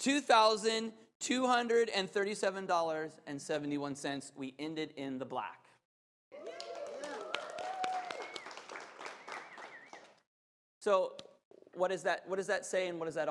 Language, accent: English, American